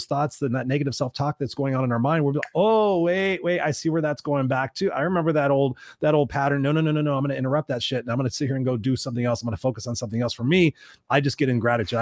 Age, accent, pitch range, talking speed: 30-49, American, 125-145 Hz, 330 wpm